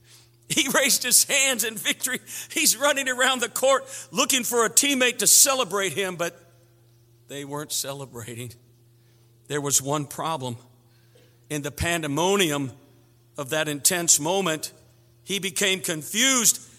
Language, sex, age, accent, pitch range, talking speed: English, male, 50-69, American, 120-165 Hz, 130 wpm